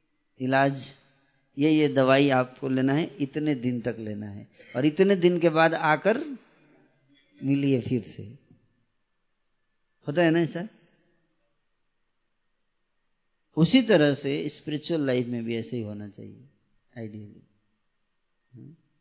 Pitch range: 120-155 Hz